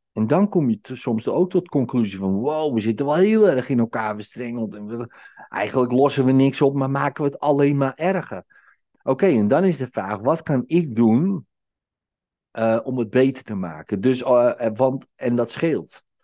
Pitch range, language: 110-150 Hz, Dutch